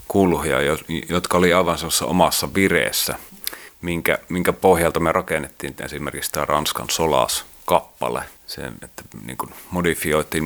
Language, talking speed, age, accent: Finnish, 100 wpm, 30-49, native